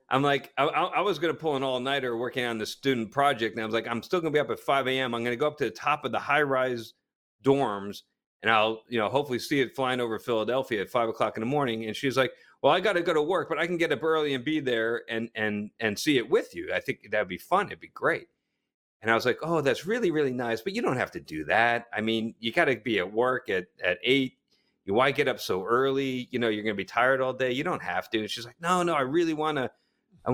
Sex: male